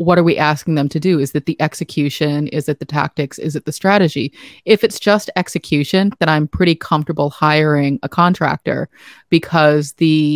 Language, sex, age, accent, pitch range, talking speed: English, female, 30-49, American, 155-175 Hz, 185 wpm